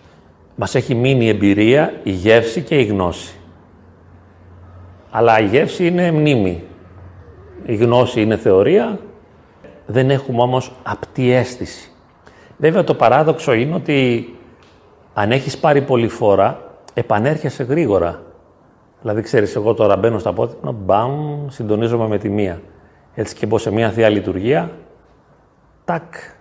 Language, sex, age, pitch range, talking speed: Greek, male, 40-59, 90-125 Hz, 125 wpm